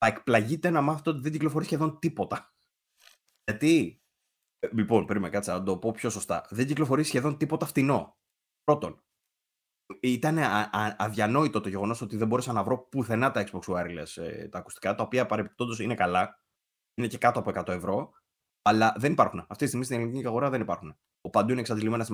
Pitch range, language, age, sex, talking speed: 105-135 Hz, Greek, 20-39, male, 185 wpm